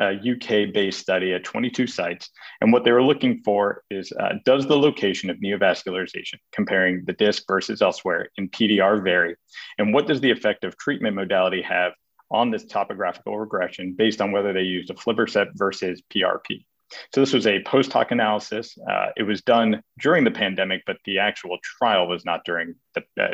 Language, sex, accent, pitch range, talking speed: English, male, American, 95-115 Hz, 185 wpm